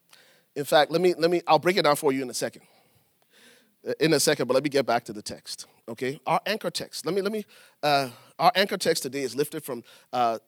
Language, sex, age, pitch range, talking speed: English, male, 40-59, 135-200 Hz, 245 wpm